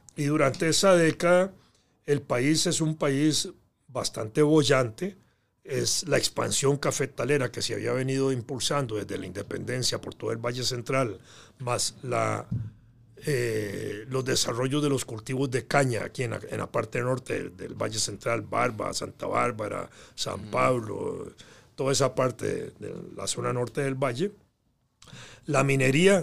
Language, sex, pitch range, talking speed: Spanish, male, 120-145 Hz, 145 wpm